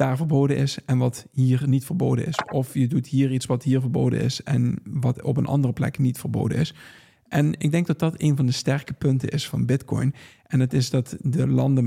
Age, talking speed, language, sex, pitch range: 50-69, 235 wpm, Dutch, male, 130-150 Hz